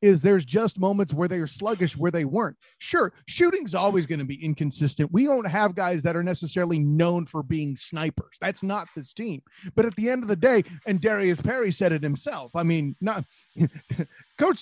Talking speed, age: 205 wpm, 30-49